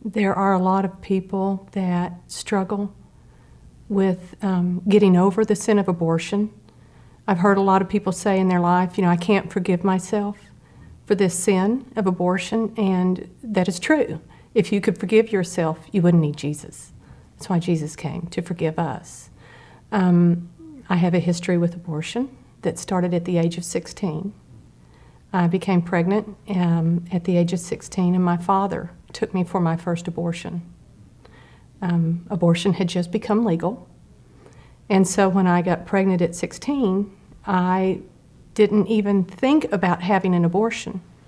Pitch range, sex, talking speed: 175-200 Hz, female, 160 wpm